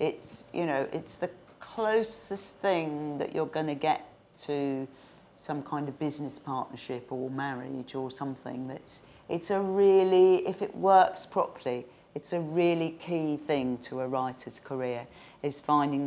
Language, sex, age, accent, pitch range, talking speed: English, female, 40-59, British, 135-170 Hz, 155 wpm